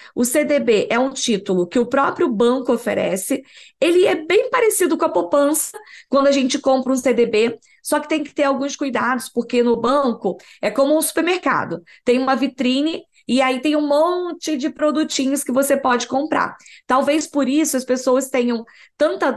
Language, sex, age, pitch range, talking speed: Portuguese, female, 10-29, 245-305 Hz, 180 wpm